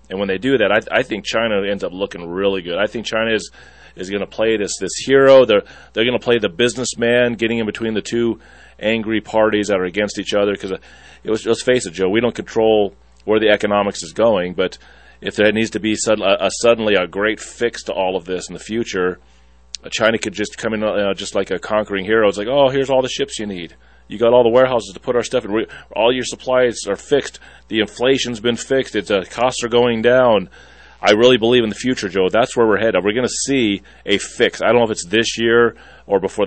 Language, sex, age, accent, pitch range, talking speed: English, male, 30-49, American, 95-115 Hz, 240 wpm